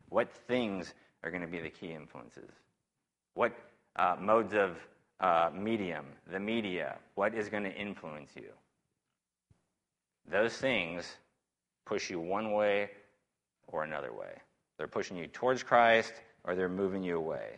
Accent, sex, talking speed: American, male, 145 wpm